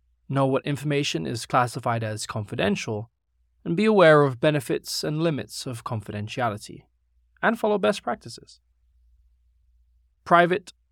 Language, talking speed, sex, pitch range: English, 115 wpm, male, 105-160 Hz